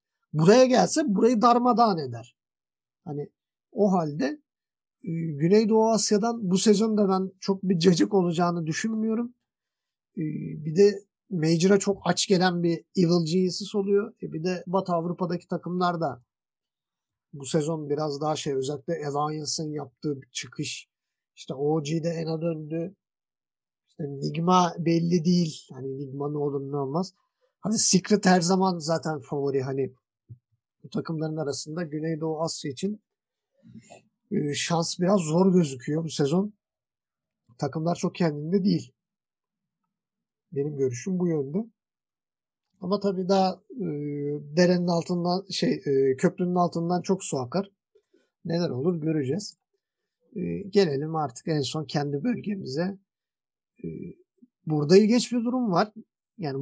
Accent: native